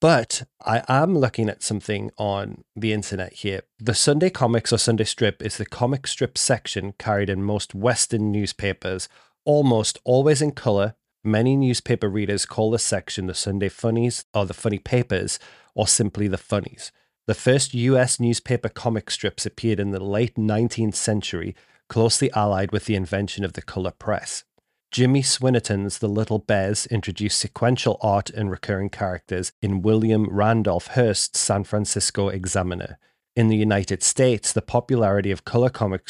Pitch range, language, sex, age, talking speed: 100-120 Hz, English, male, 30-49, 160 wpm